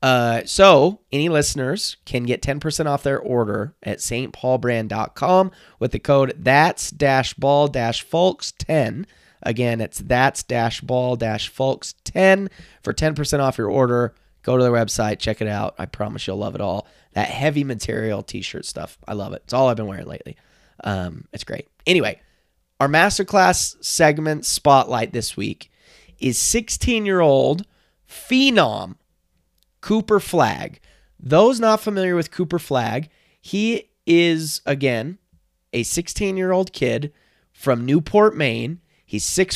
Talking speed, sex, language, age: 145 wpm, male, English, 30-49